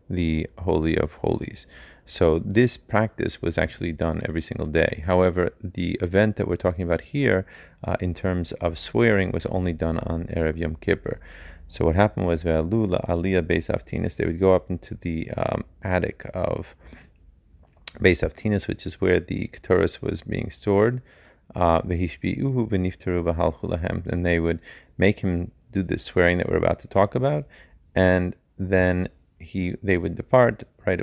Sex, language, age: male, Hebrew, 30-49